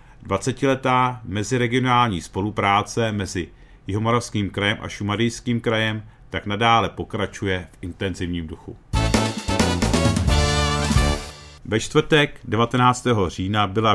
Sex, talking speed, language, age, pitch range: male, 85 wpm, Czech, 40-59, 100-120 Hz